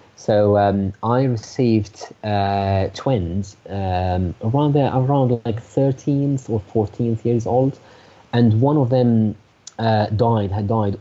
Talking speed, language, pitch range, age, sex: 130 wpm, English, 100-120 Hz, 20-39, male